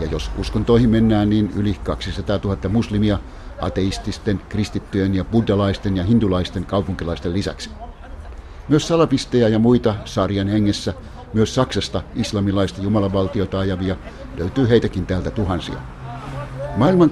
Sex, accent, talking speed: male, native, 115 wpm